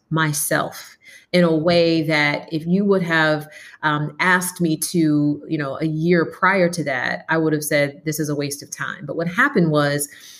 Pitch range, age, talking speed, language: 160-195 Hz, 30-49, 195 wpm, English